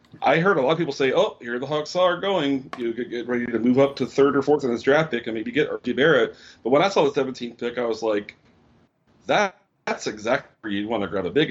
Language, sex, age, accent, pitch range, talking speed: English, male, 30-49, American, 110-135 Hz, 275 wpm